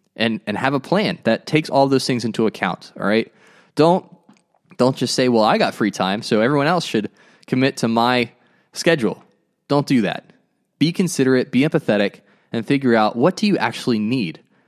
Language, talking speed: English, 190 wpm